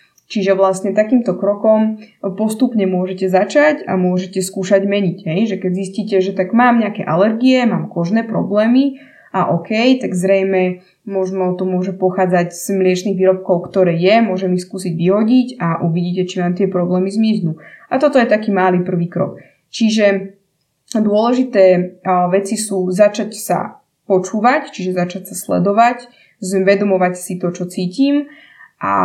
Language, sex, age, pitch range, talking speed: Slovak, female, 20-39, 180-210 Hz, 145 wpm